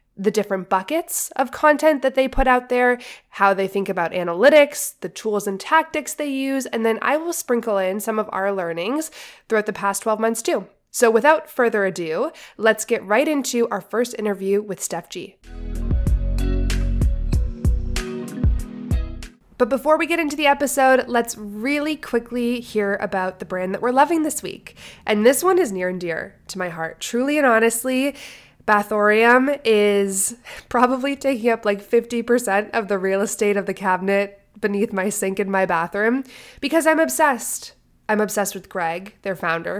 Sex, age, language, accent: female, 20-39, English, American